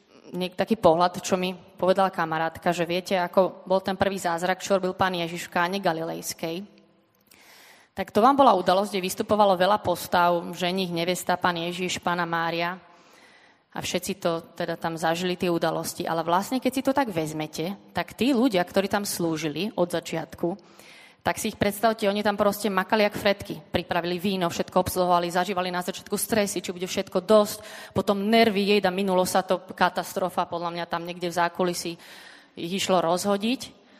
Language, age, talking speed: Slovak, 20-39, 170 wpm